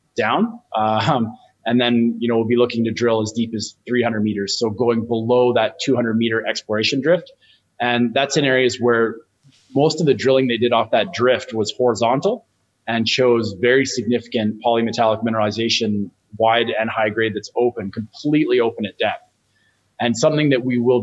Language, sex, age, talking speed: English, male, 20-39, 175 wpm